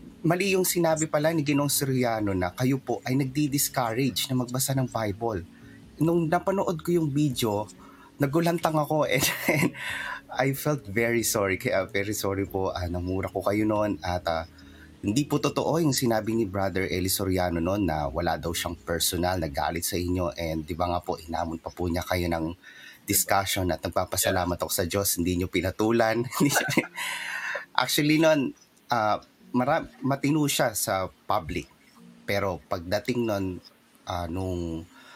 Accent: native